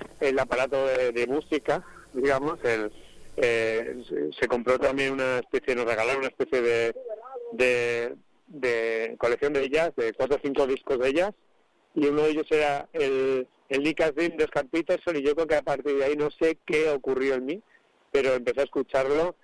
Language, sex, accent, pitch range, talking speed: Spanish, male, Spanish, 140-185 Hz, 185 wpm